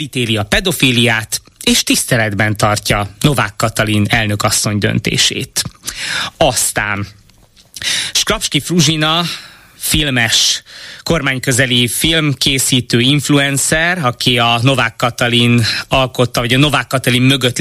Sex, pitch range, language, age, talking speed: male, 115-140 Hz, Hungarian, 20-39, 90 wpm